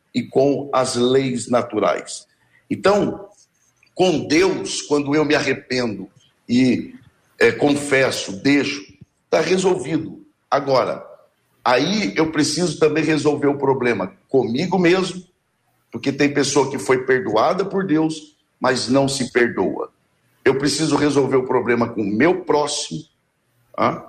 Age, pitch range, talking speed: 60-79, 130-155 Hz, 120 wpm